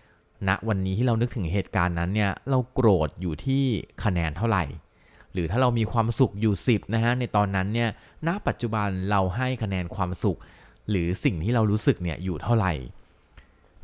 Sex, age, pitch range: male, 20-39, 90-115 Hz